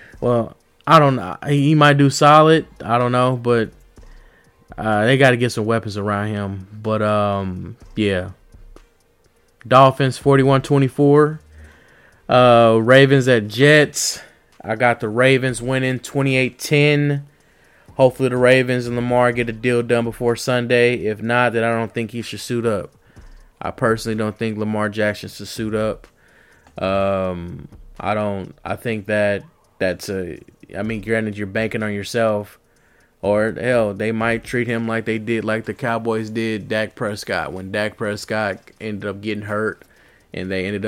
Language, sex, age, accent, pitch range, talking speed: English, male, 20-39, American, 105-125 Hz, 155 wpm